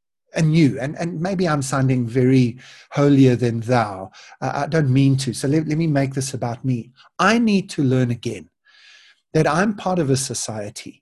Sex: male